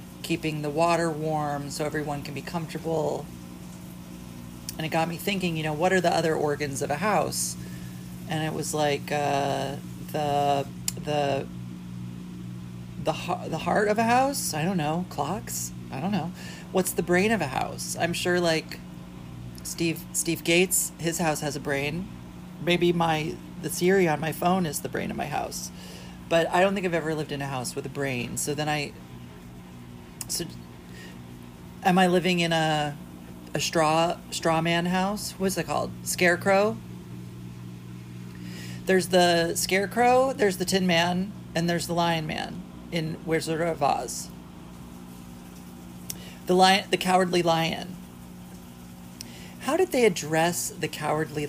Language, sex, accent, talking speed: English, male, American, 155 wpm